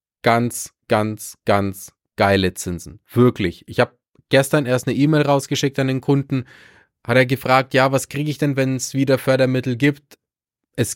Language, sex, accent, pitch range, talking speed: German, male, German, 115-145 Hz, 165 wpm